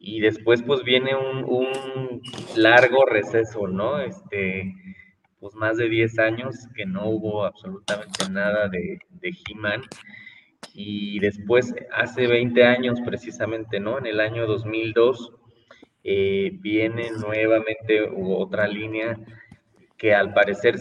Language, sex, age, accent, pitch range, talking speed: Spanish, male, 20-39, Mexican, 105-125 Hz, 120 wpm